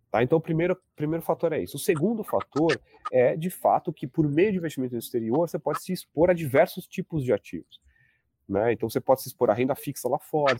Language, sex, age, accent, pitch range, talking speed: Portuguese, male, 30-49, Brazilian, 105-140 Hz, 225 wpm